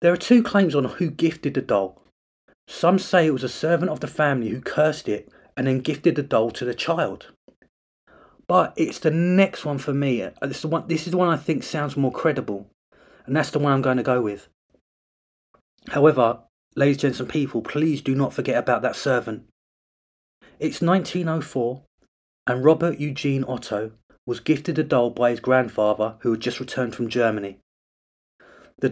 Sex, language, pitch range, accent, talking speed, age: male, English, 115-155 Hz, British, 180 wpm, 30-49